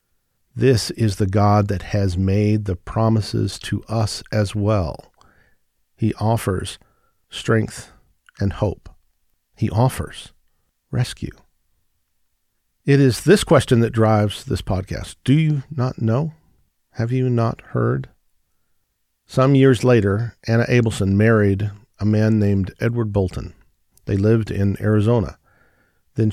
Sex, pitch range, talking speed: male, 95-115 Hz, 120 wpm